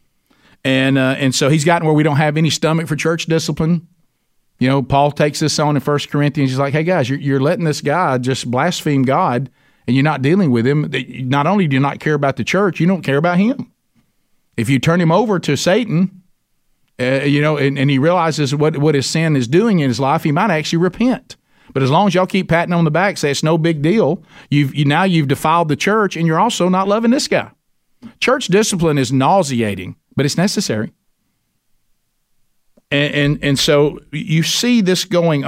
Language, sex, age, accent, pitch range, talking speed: English, male, 50-69, American, 140-175 Hz, 215 wpm